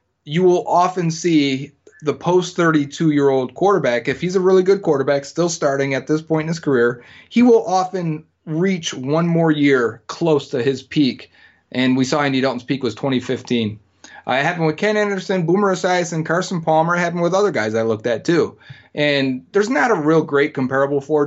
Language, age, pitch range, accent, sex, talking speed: English, 30-49, 130-165 Hz, American, male, 205 wpm